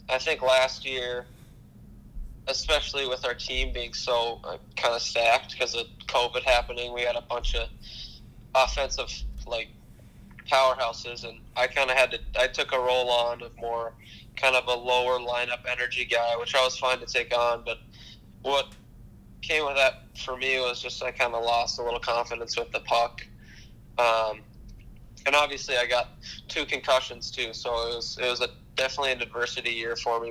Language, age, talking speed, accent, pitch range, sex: English, 10-29, 180 wpm, American, 115-125 Hz, male